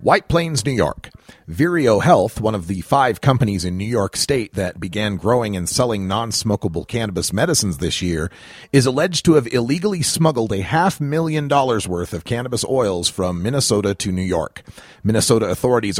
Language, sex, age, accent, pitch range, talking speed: English, male, 40-59, American, 100-135 Hz, 175 wpm